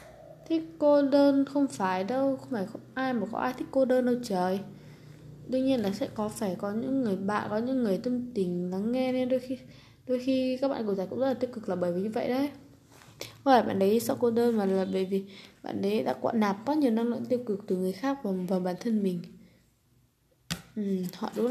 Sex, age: female, 20-39